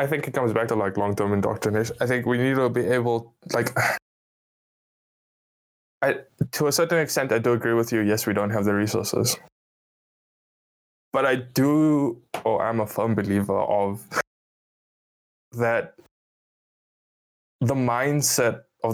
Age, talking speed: 20-39, 150 wpm